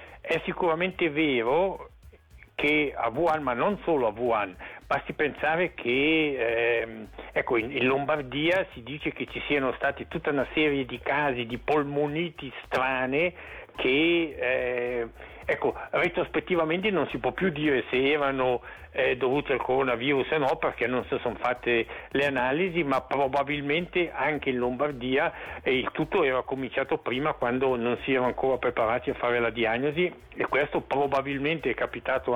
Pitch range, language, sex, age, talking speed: 125-155 Hz, Italian, male, 60-79, 150 wpm